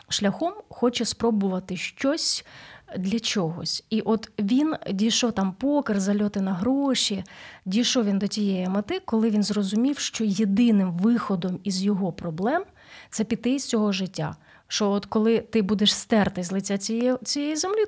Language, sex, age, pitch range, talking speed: Ukrainian, female, 30-49, 195-240 Hz, 150 wpm